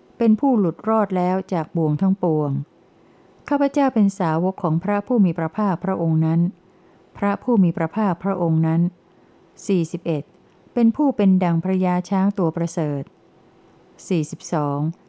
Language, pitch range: Thai, 165-200 Hz